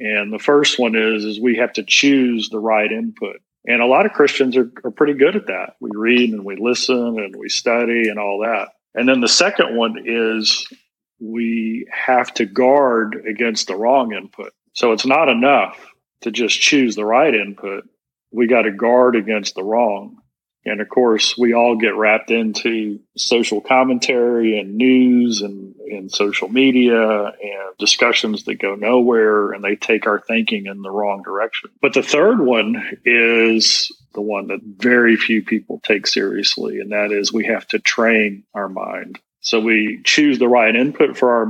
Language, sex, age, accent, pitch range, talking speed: English, male, 40-59, American, 105-120 Hz, 180 wpm